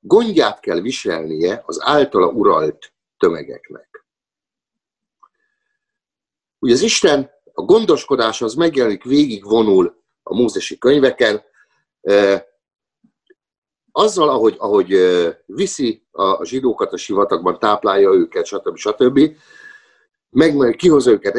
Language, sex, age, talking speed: Hungarian, male, 50-69, 95 wpm